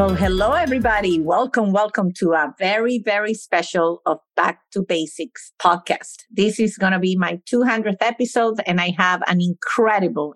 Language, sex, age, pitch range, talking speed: English, female, 50-69, 170-215 Hz, 160 wpm